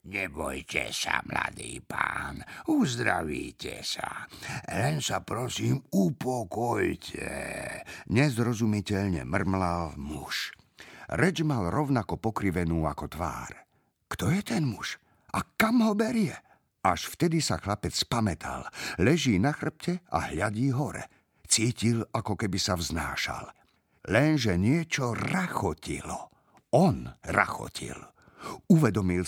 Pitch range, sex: 95-155 Hz, male